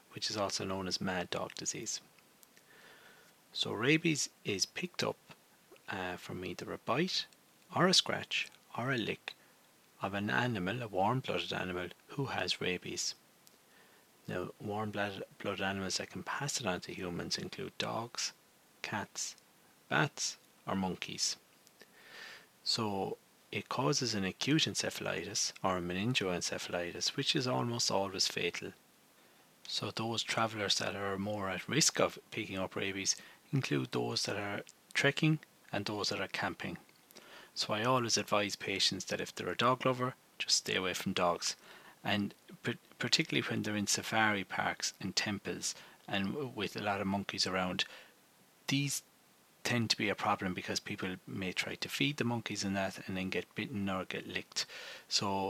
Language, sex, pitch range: English, male, 95-115 Hz